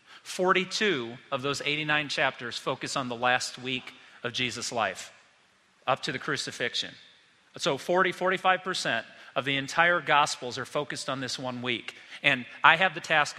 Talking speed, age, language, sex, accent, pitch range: 155 wpm, 40-59, English, male, American, 135-170 Hz